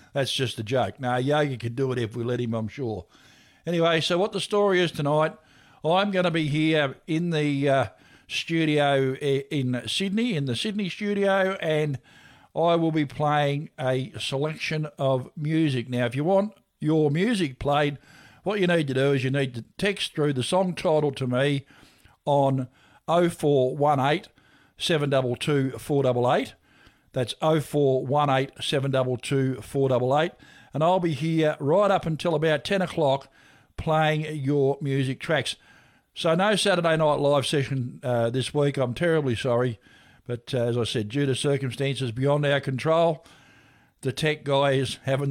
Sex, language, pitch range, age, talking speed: male, English, 130-165 Hz, 60-79, 155 wpm